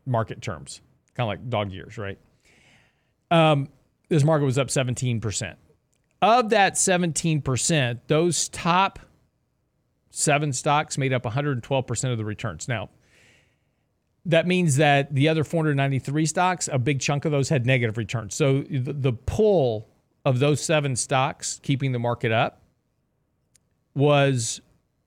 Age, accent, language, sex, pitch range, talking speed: 40-59, American, English, male, 120-150 Hz, 140 wpm